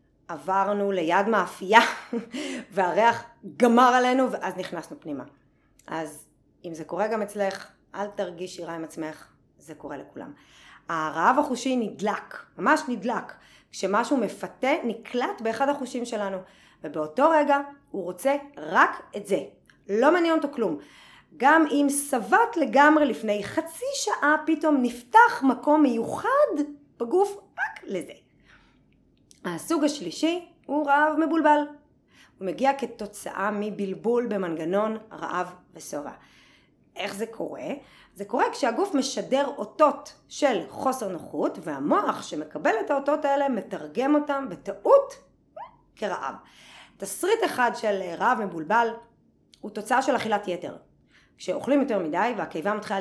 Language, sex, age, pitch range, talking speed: Hebrew, female, 30-49, 195-285 Hz, 120 wpm